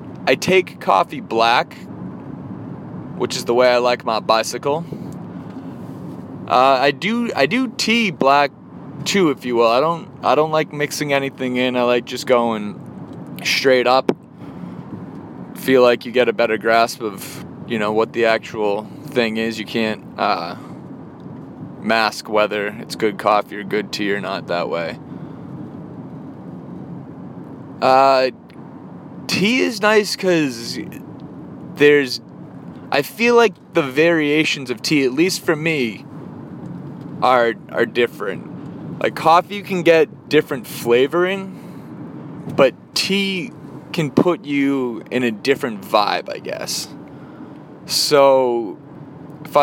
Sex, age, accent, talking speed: male, 20-39, American, 130 wpm